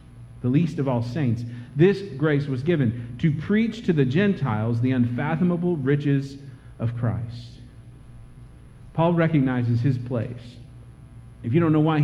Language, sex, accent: English, male, American